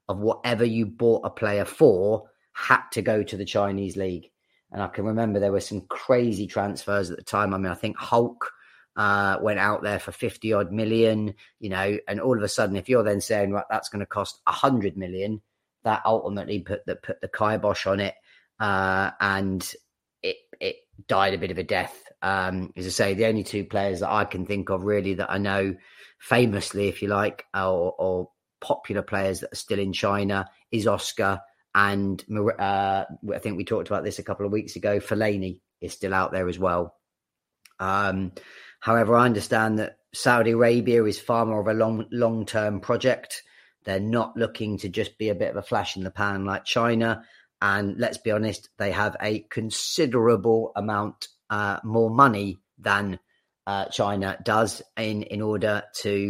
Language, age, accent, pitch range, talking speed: English, 30-49, British, 95-110 Hz, 195 wpm